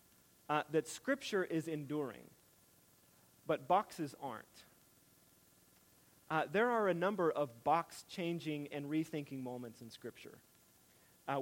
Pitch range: 140-180 Hz